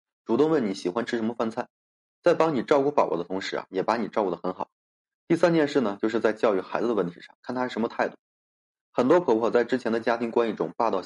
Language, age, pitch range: Chinese, 20-39, 110-145 Hz